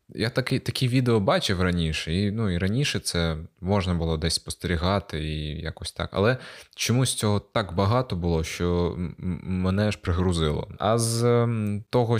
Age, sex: 20-39, male